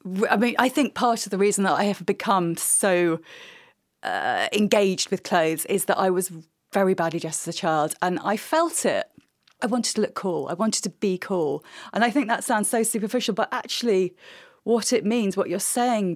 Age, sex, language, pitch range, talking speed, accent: 30-49, female, English, 185-245 Hz, 210 wpm, British